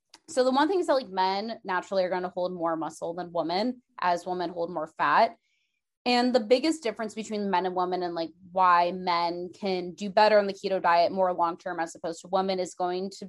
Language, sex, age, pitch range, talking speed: English, female, 20-39, 175-215 Hz, 225 wpm